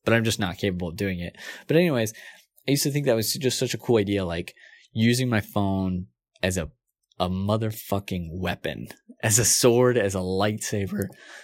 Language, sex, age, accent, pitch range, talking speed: English, male, 20-39, American, 95-120 Hz, 190 wpm